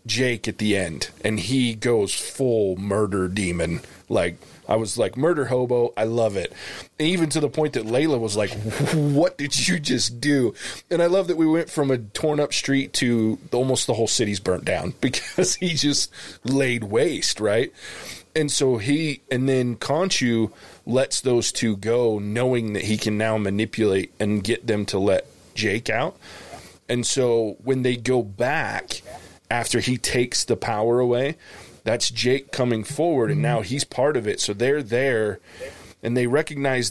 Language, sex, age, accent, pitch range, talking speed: English, male, 20-39, American, 105-130 Hz, 175 wpm